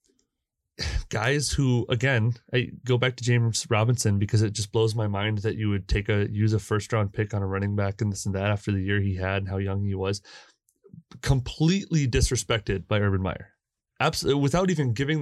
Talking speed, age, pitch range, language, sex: 200 wpm, 30-49, 100-125 Hz, English, male